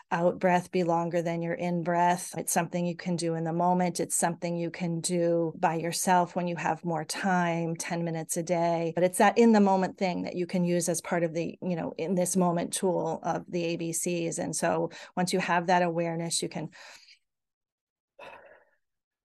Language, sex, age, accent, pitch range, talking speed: English, female, 40-59, American, 170-185 Hz, 205 wpm